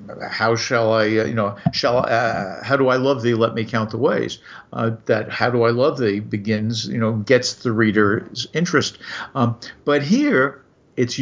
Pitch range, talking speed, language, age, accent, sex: 110-135 Hz, 195 wpm, English, 50-69, American, male